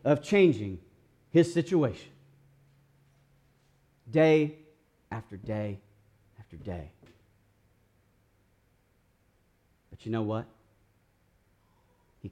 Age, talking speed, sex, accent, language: 40-59, 70 wpm, male, American, English